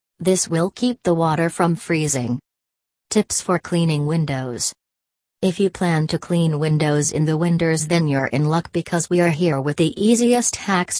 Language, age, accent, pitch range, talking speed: English, 40-59, American, 145-175 Hz, 175 wpm